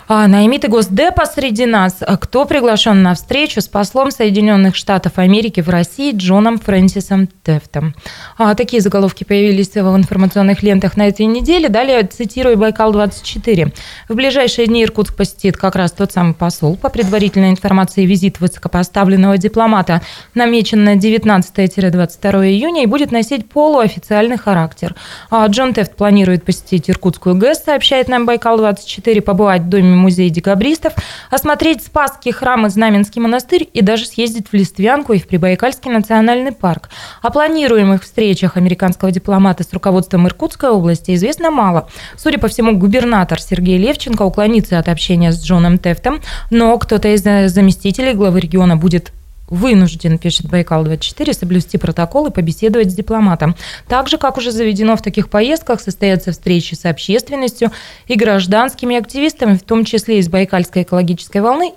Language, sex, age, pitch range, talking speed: Russian, female, 20-39, 185-235 Hz, 140 wpm